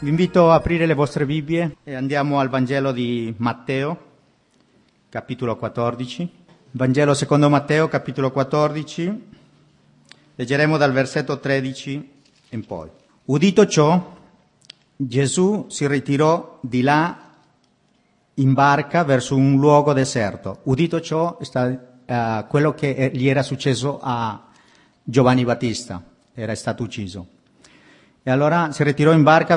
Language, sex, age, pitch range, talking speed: Italian, male, 50-69, 125-155 Hz, 120 wpm